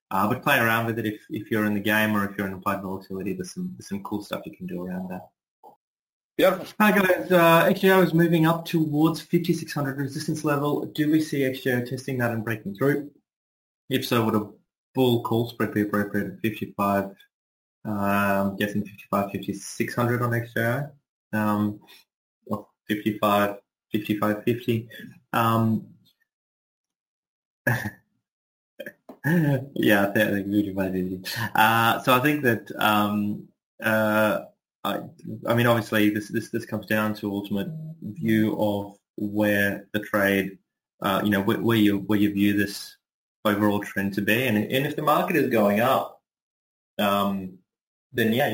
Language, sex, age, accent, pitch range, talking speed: English, male, 20-39, Australian, 100-130 Hz, 155 wpm